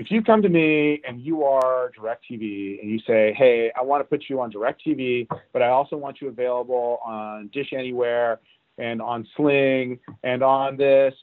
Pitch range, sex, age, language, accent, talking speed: 115-145 Hz, male, 40-59, English, American, 185 wpm